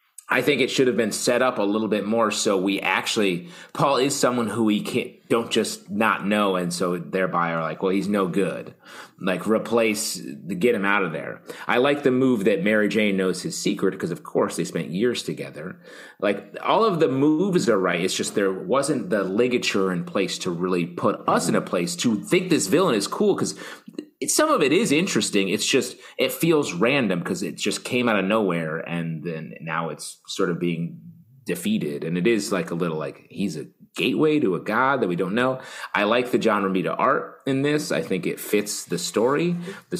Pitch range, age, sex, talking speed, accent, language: 95-130 Hz, 30-49, male, 220 wpm, American, English